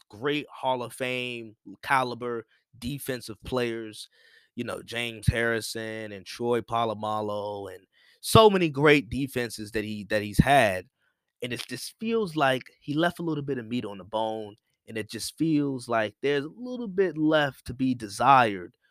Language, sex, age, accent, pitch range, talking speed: English, male, 20-39, American, 115-165 Hz, 165 wpm